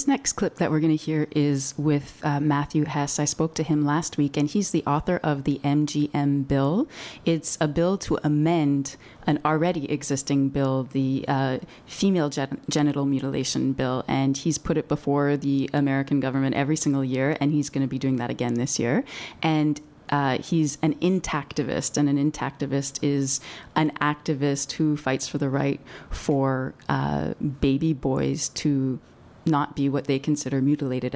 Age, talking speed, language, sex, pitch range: 30-49, 175 wpm, English, female, 135-155 Hz